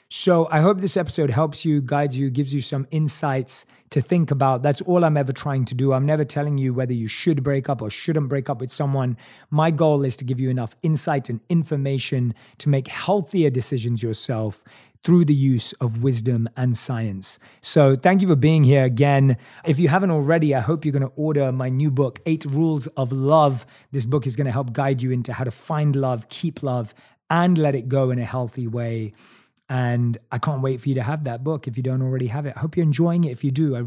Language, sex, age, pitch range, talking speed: English, male, 30-49, 130-160 Hz, 230 wpm